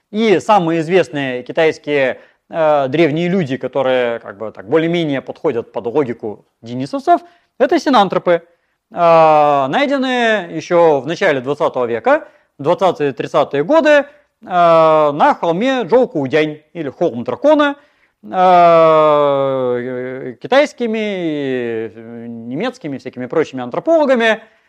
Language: Russian